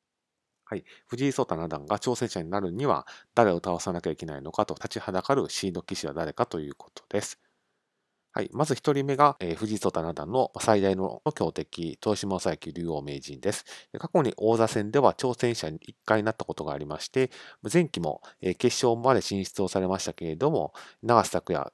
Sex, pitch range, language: male, 85-120 Hz, Japanese